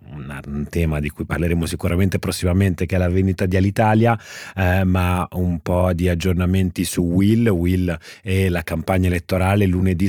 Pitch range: 90-105 Hz